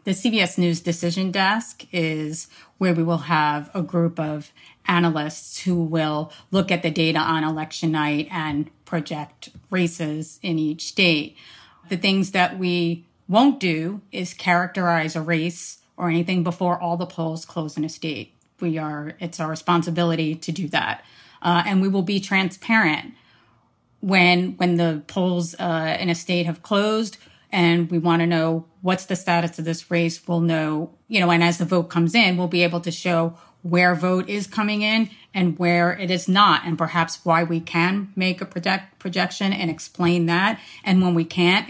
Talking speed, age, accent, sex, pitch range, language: 180 wpm, 30-49, American, female, 160-180 Hz, English